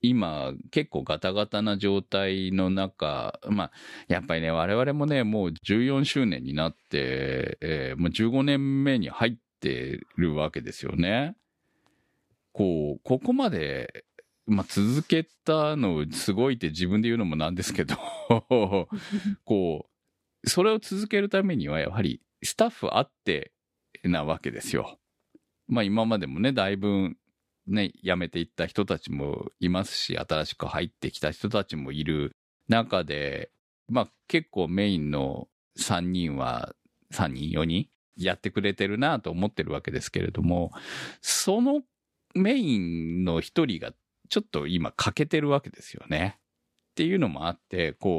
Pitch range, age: 80-135 Hz, 40-59